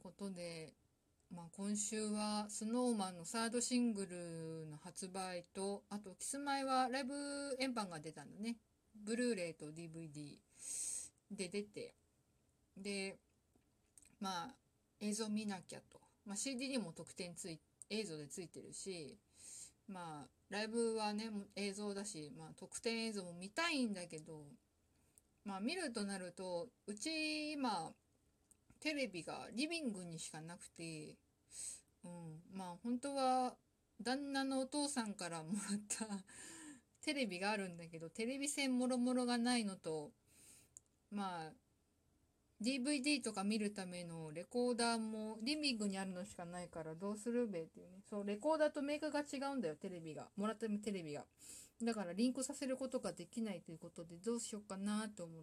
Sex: female